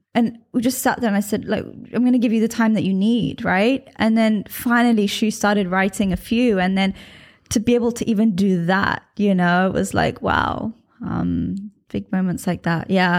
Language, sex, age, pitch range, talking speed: English, female, 20-39, 200-240 Hz, 220 wpm